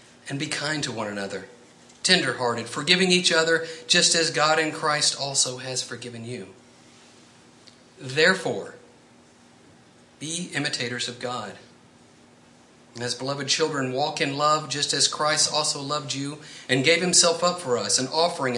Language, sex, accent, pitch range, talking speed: English, male, American, 120-150 Hz, 140 wpm